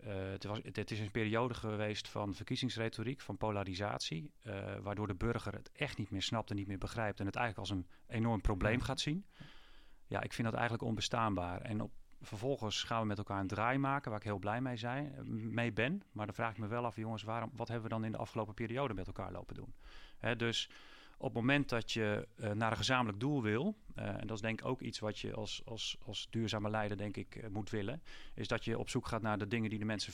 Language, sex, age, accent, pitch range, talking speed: Dutch, male, 40-59, Dutch, 105-120 Hz, 245 wpm